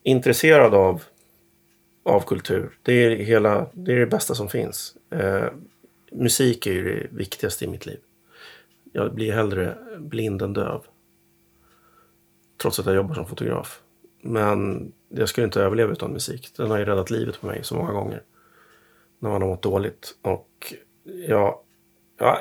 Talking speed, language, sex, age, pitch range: 160 wpm, English, male, 30-49, 95-120 Hz